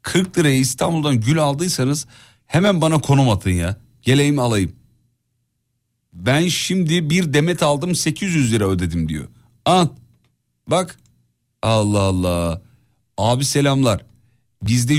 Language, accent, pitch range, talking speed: Turkish, native, 100-150 Hz, 115 wpm